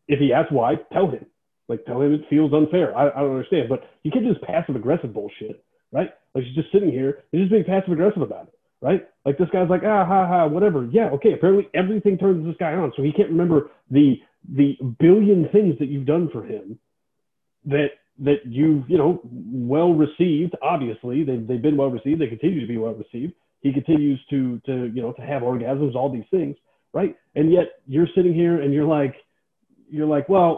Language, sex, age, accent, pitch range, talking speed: English, male, 30-49, American, 140-190 Hz, 220 wpm